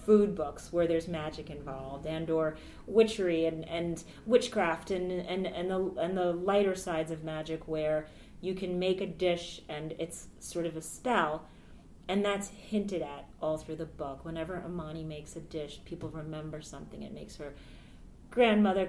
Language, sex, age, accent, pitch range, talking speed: English, female, 30-49, American, 155-210 Hz, 170 wpm